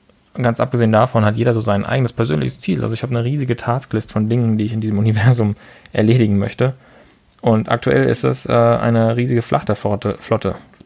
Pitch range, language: 110-125 Hz, German